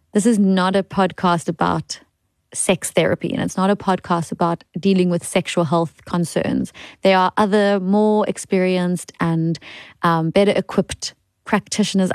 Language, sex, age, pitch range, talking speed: English, female, 30-49, 175-210 Hz, 145 wpm